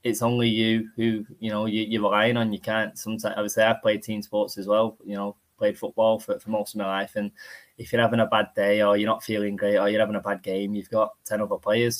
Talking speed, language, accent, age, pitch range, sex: 275 wpm, English, British, 20-39, 100-115 Hz, male